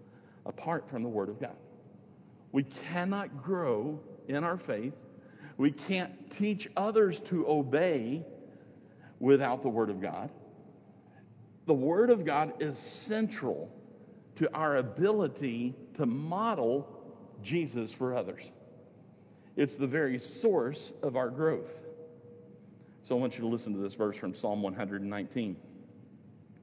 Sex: male